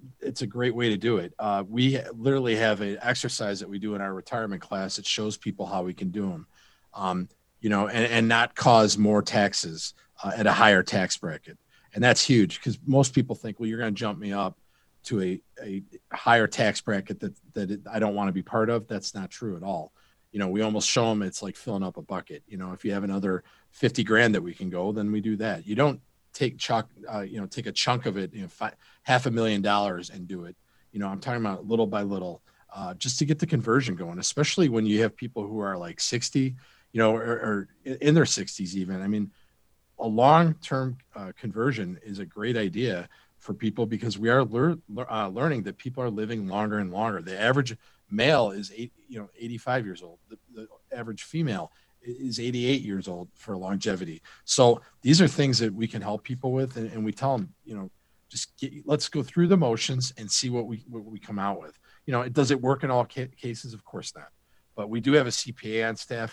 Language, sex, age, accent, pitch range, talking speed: English, male, 40-59, American, 100-125 Hz, 230 wpm